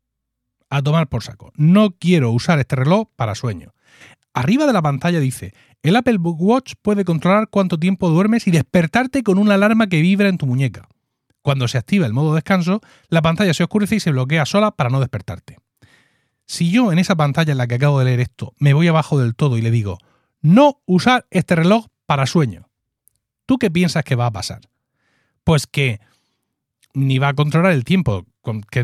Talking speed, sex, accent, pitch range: 195 wpm, male, Spanish, 120-175 Hz